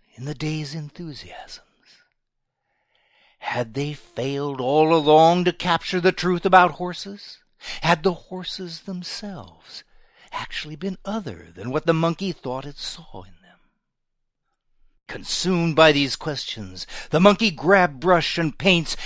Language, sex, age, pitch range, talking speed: English, male, 60-79, 125-180 Hz, 130 wpm